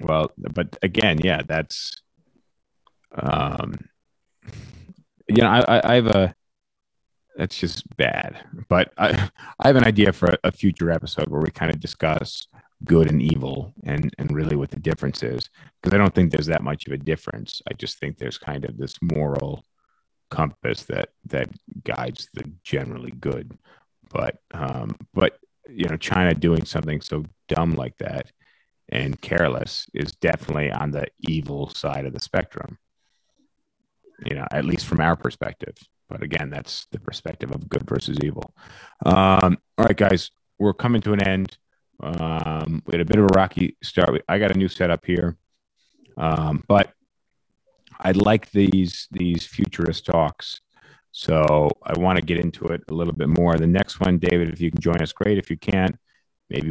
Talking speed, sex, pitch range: 170 wpm, male, 80-95 Hz